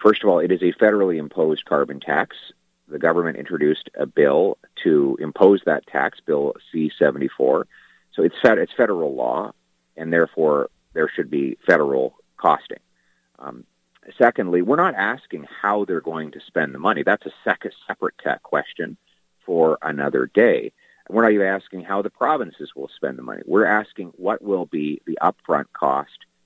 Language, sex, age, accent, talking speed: English, male, 40-59, American, 160 wpm